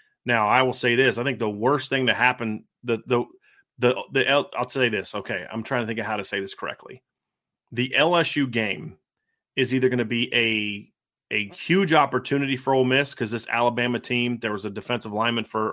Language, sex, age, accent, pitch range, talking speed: English, male, 30-49, American, 115-150 Hz, 210 wpm